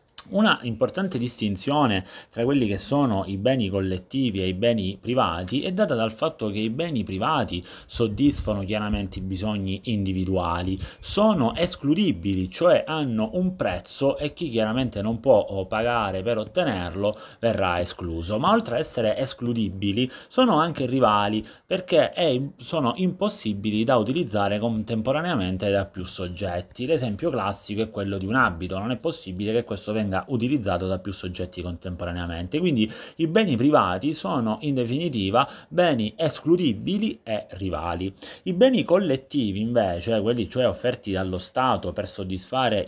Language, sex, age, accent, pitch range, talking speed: Italian, male, 30-49, native, 95-130 Hz, 140 wpm